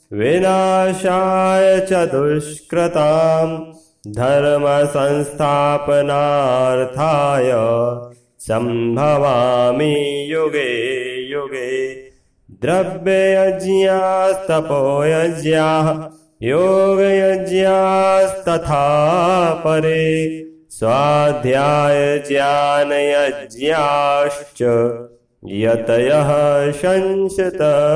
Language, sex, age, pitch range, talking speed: Hindi, male, 30-49, 135-160 Hz, 30 wpm